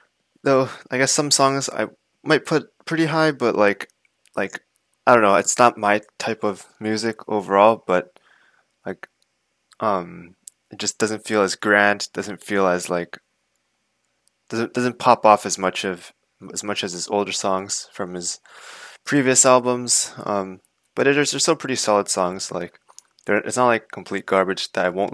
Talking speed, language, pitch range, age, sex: 170 wpm, English, 95-120 Hz, 20-39, male